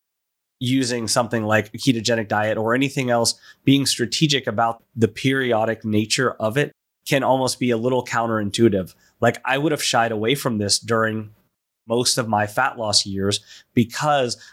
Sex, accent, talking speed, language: male, American, 160 wpm, English